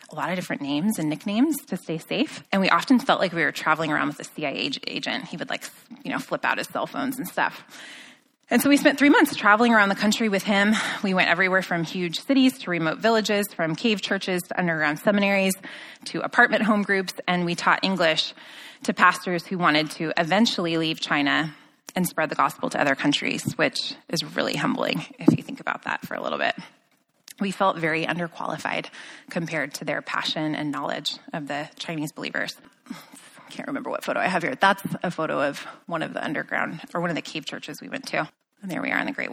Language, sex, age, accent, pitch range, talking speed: English, female, 20-39, American, 165-220 Hz, 220 wpm